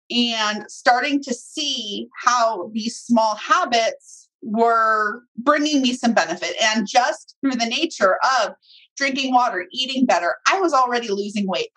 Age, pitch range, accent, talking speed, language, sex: 30-49, 225-305 Hz, American, 145 wpm, English, female